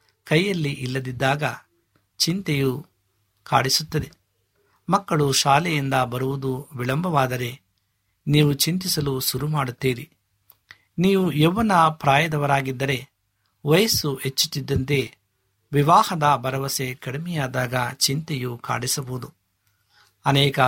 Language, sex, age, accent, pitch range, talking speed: Kannada, male, 60-79, native, 120-150 Hz, 65 wpm